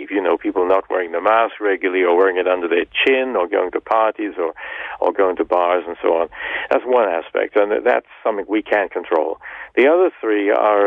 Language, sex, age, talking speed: English, male, 60-79, 215 wpm